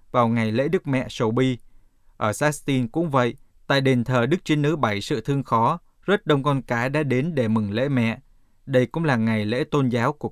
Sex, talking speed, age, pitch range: male, 225 wpm, 20-39, 115-145 Hz